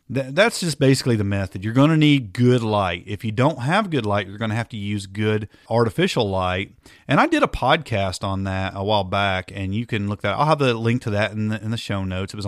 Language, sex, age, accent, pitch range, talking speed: English, male, 40-59, American, 95-120 Hz, 270 wpm